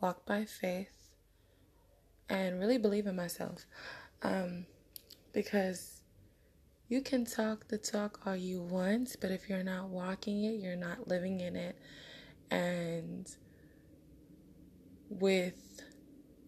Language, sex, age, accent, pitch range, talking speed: English, female, 20-39, American, 170-220 Hz, 115 wpm